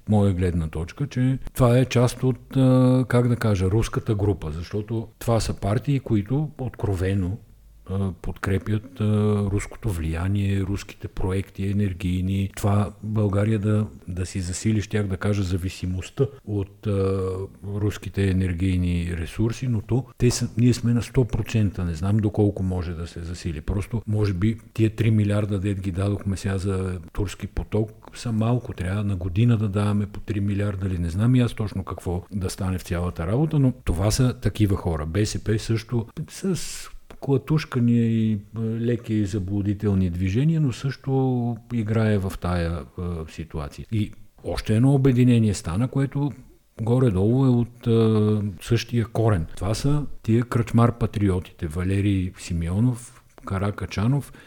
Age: 50-69